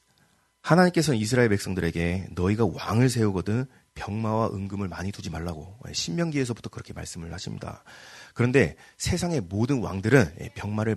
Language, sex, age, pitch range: Korean, male, 30-49, 95-140 Hz